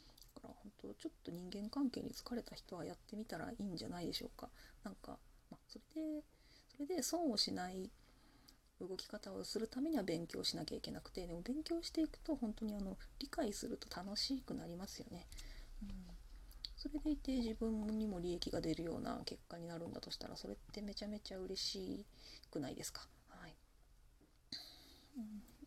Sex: female